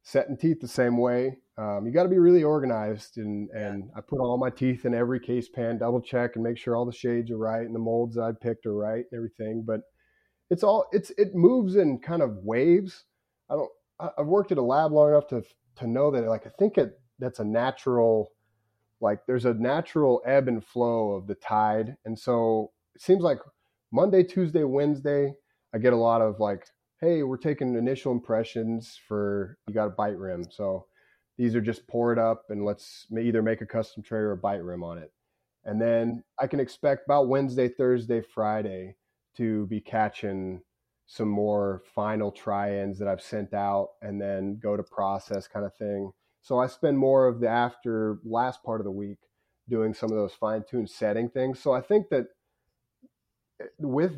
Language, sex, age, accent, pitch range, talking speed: English, male, 30-49, American, 105-130 Hz, 195 wpm